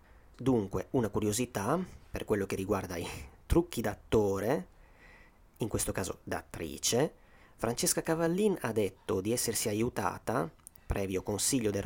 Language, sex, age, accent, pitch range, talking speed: Italian, male, 30-49, native, 95-120 Hz, 120 wpm